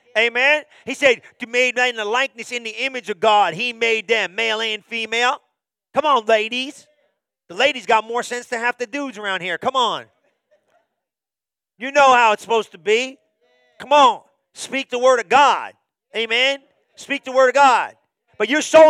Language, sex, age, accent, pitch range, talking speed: English, male, 40-59, American, 235-285 Hz, 185 wpm